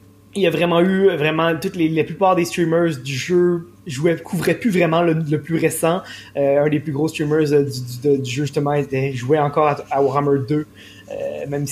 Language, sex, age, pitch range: French, male, 20-39, 140-160 Hz